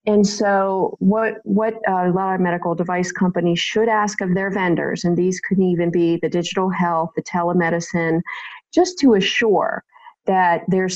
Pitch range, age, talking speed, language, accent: 170-205 Hz, 40-59, 170 wpm, English, American